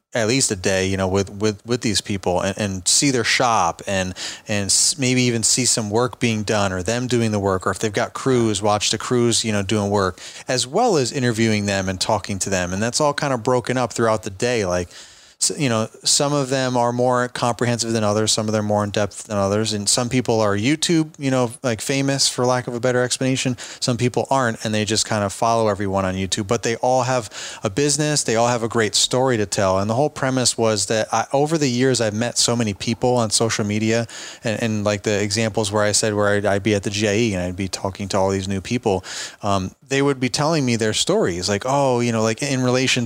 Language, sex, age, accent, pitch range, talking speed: English, male, 30-49, American, 105-125 Hz, 250 wpm